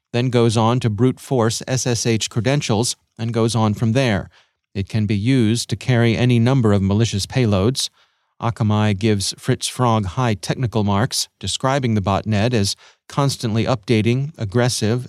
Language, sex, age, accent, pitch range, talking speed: English, male, 40-59, American, 105-130 Hz, 145 wpm